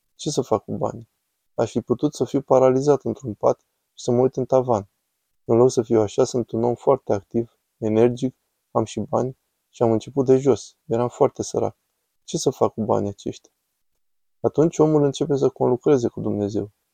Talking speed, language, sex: 190 wpm, Romanian, male